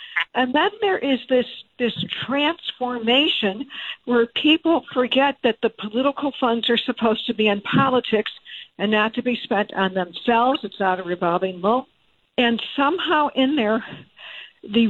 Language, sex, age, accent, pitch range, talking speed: English, female, 60-79, American, 225-270 Hz, 155 wpm